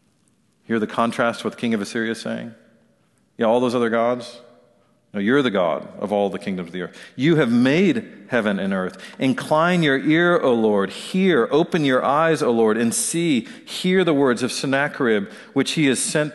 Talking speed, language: 210 wpm, English